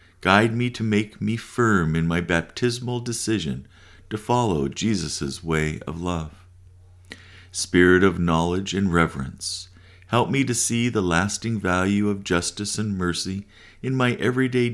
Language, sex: English, male